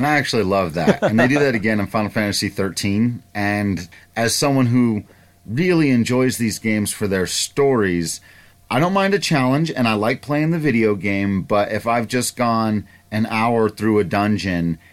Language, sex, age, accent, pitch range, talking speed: English, male, 30-49, American, 90-120 Hz, 190 wpm